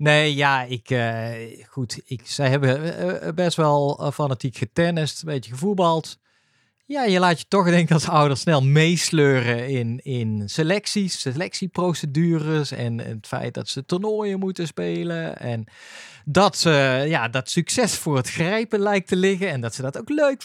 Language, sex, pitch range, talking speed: Dutch, male, 125-170 Hz, 165 wpm